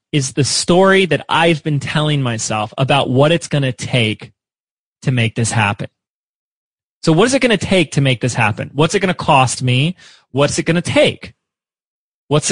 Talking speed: 195 wpm